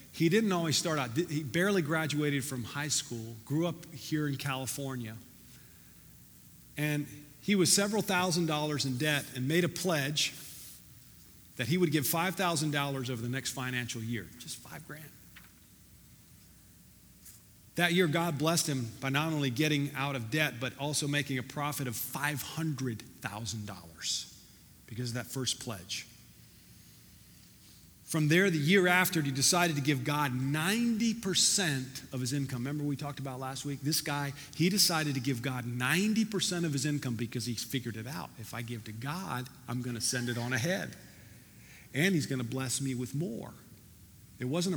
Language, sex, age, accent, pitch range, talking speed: English, male, 40-59, American, 125-160 Hz, 170 wpm